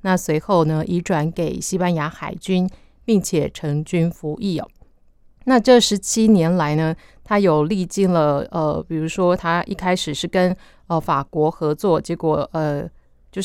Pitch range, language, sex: 165-205 Hz, Chinese, female